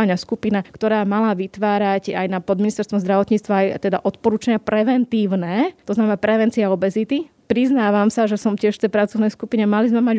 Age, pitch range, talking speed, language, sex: 20-39, 195-225 Hz, 165 wpm, Slovak, female